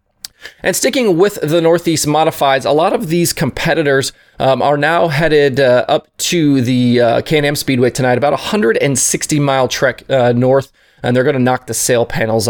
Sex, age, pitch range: male, 20-39, 120-165 Hz